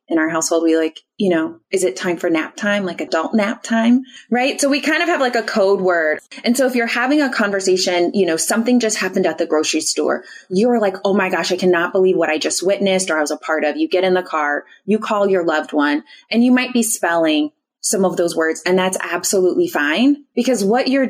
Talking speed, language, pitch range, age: 245 wpm, English, 175-230 Hz, 20-39